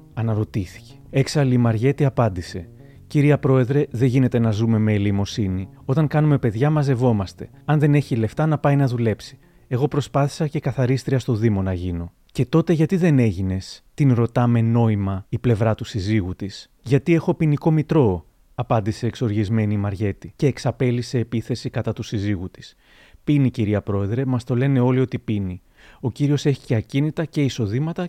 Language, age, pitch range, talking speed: Greek, 30-49, 110-145 Hz, 165 wpm